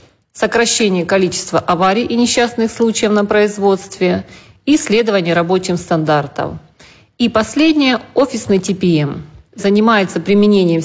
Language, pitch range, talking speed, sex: Russian, 160-225 Hz, 95 wpm, female